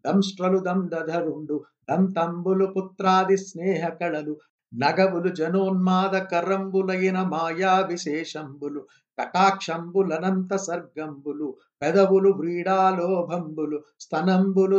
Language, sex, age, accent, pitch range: Telugu, male, 60-79, native, 160-190 Hz